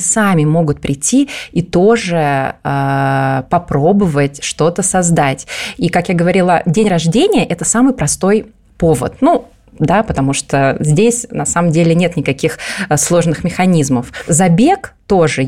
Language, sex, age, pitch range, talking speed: Russian, female, 20-39, 150-195 Hz, 130 wpm